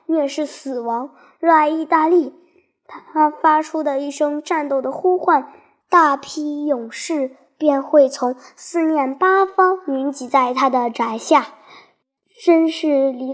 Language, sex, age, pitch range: Chinese, male, 10-29, 270-330 Hz